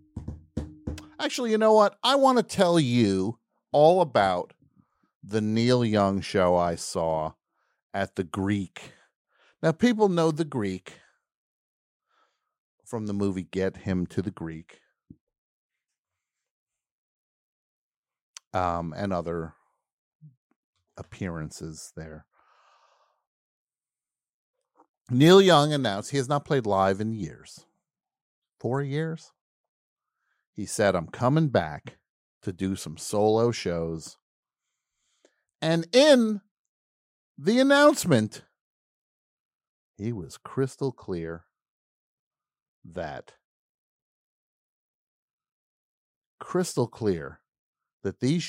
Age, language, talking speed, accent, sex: 50-69, English, 90 wpm, American, male